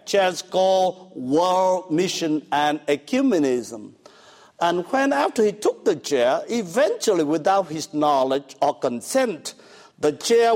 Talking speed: 120 wpm